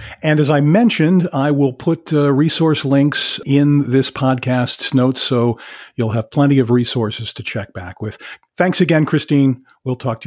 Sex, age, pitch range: male, 50-69, 125-175 Hz